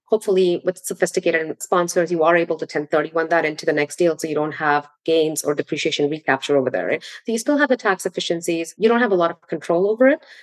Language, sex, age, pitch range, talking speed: English, female, 30-49, 160-195 Hz, 235 wpm